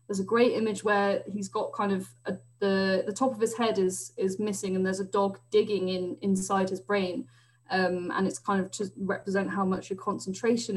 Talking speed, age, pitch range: 215 wpm, 20-39, 185-215 Hz